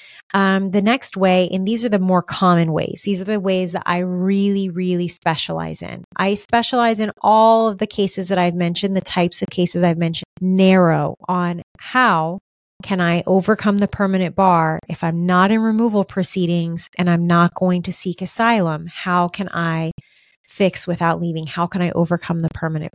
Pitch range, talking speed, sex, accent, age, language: 170-195 Hz, 185 wpm, female, American, 30-49, English